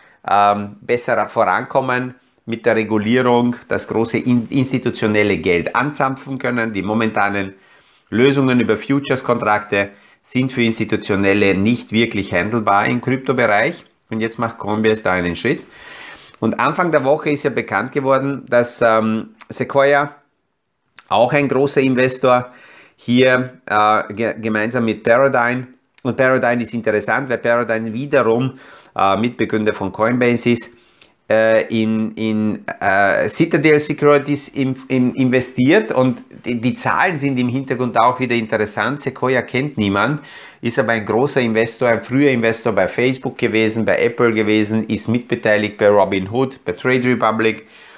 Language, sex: German, male